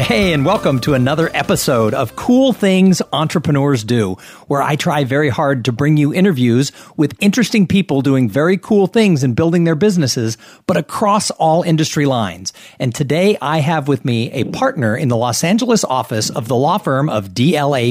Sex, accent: male, American